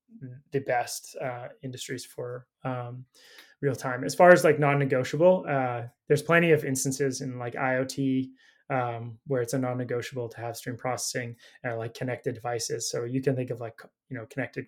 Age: 20-39